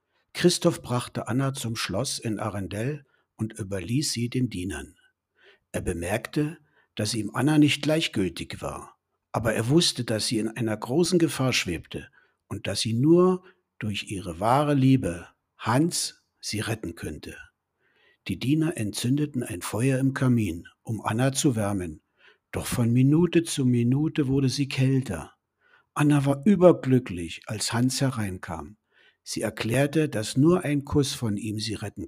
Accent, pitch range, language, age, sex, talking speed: German, 105-145 Hz, German, 60-79, male, 145 wpm